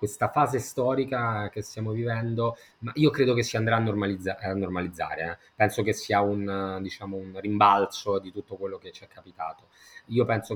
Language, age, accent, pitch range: Italian, 20-39, native, 105-135 Hz